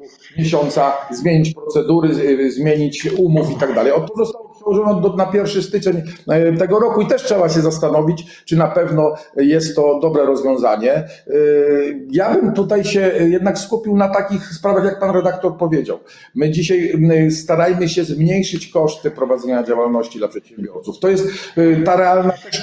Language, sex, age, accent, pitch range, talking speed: Polish, male, 40-59, native, 150-185 Hz, 150 wpm